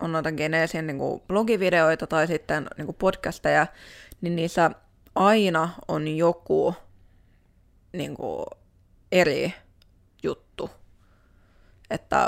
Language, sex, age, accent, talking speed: Finnish, female, 20-39, native, 95 wpm